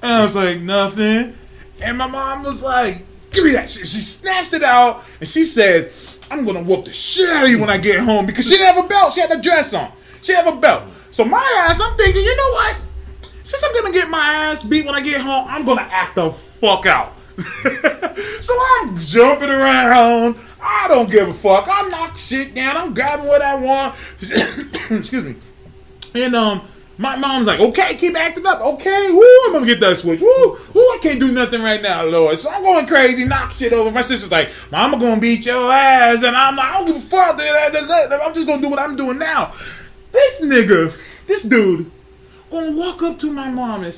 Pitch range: 235-370 Hz